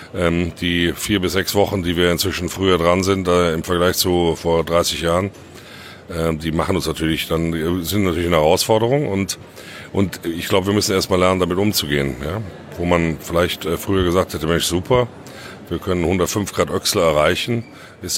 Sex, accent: male, German